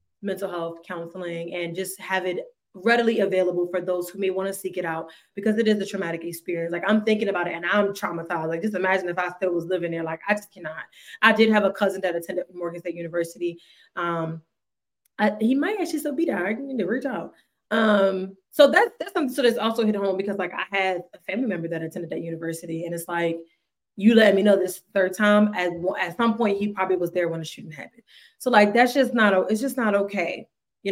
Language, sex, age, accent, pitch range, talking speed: English, female, 20-39, American, 180-235 Hz, 230 wpm